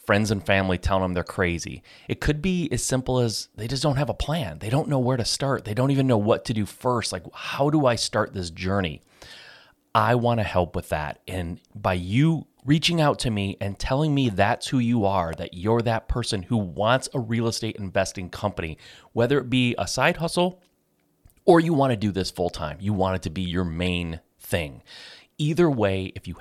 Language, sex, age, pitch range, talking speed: English, male, 30-49, 90-120 Hz, 220 wpm